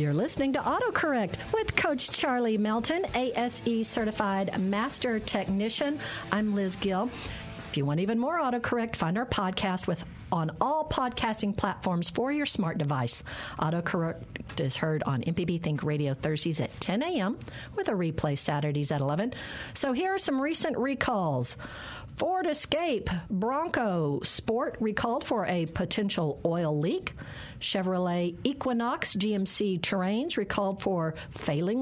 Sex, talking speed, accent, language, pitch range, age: female, 140 wpm, American, English, 165-240 Hz, 50-69